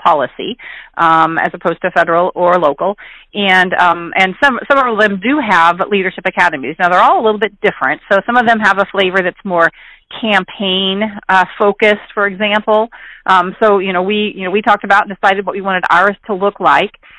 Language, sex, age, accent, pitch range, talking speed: English, female, 40-59, American, 180-220 Hz, 205 wpm